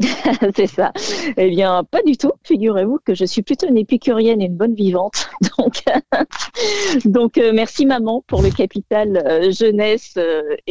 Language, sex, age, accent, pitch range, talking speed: French, female, 40-59, French, 170-225 Hz, 165 wpm